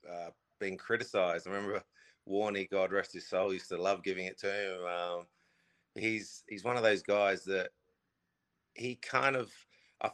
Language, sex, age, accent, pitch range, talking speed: English, male, 30-49, Australian, 85-95 Hz, 170 wpm